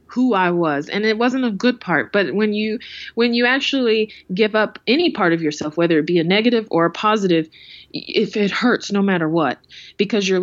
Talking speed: 215 wpm